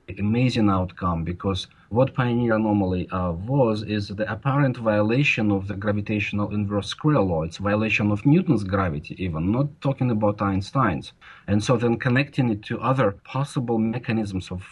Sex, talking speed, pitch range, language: male, 155 wpm, 100-125 Hz, English